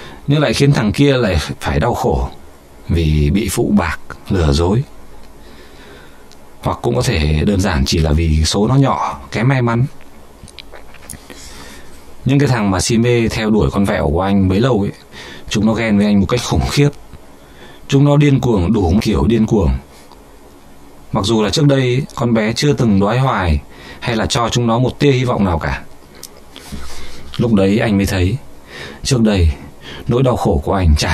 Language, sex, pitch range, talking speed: Vietnamese, male, 70-105 Hz, 185 wpm